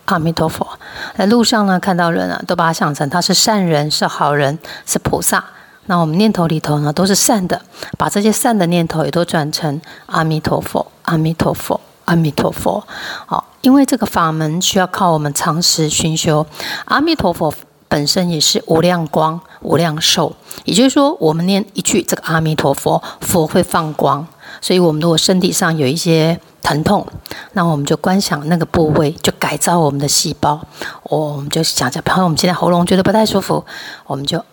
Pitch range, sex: 155-185 Hz, female